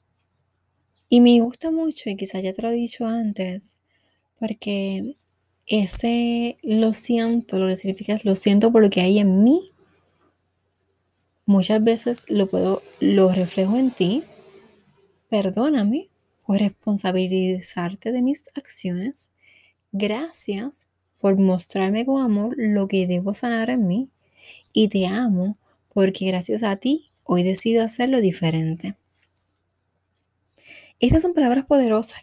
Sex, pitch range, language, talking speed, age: female, 190-235 Hz, Spanish, 125 wpm, 20-39